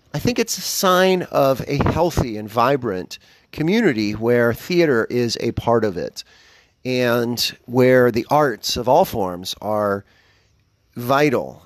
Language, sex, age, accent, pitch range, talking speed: English, male, 30-49, American, 105-135 Hz, 140 wpm